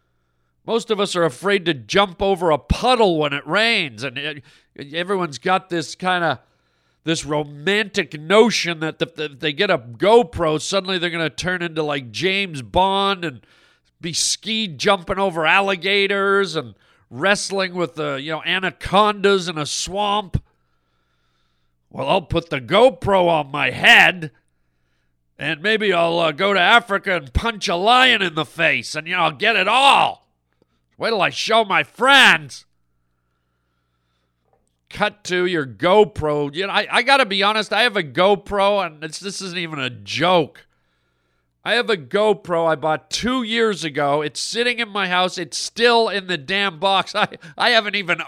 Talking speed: 170 wpm